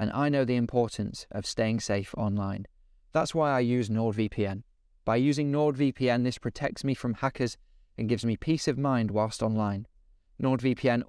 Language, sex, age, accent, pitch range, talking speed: English, male, 20-39, British, 100-120 Hz, 170 wpm